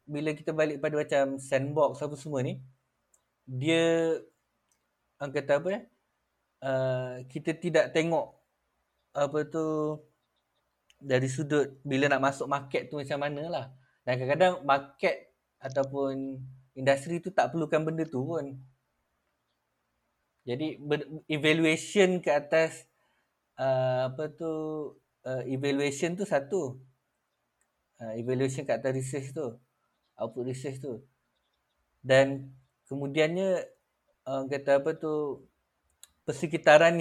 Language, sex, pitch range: Malay, male, 130-155 Hz